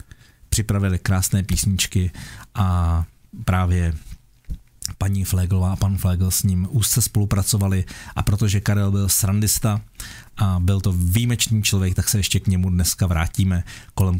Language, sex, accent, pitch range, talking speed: Czech, male, native, 95-115 Hz, 135 wpm